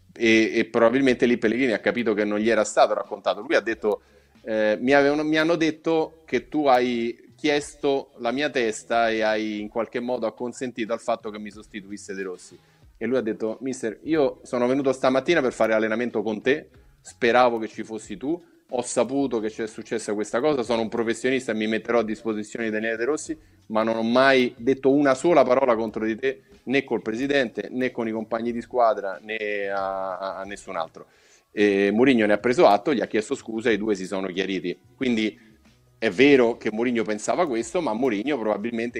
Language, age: Italian, 30-49